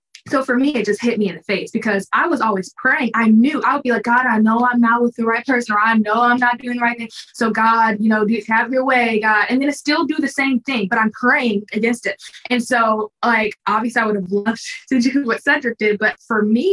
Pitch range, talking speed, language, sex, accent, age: 205-245 Hz, 275 wpm, English, female, American, 20-39